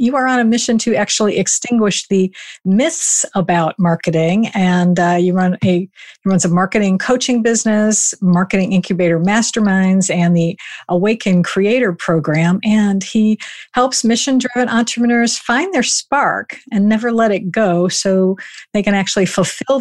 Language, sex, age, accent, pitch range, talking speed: English, female, 50-69, American, 180-235 Hz, 150 wpm